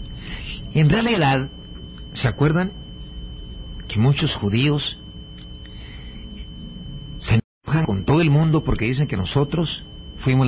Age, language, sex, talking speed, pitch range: 50-69, Spanish, male, 105 wpm, 95-145 Hz